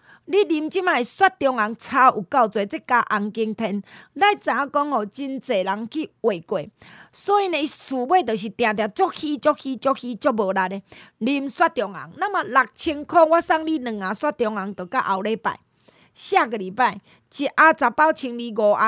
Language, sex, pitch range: Chinese, female, 215-315 Hz